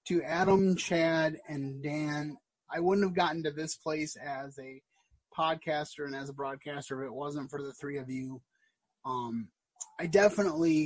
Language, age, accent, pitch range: English, 20-39, American, 145-175 Hz